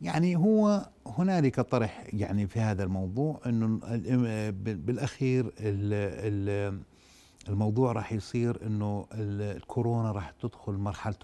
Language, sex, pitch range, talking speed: Arabic, male, 100-120 Hz, 95 wpm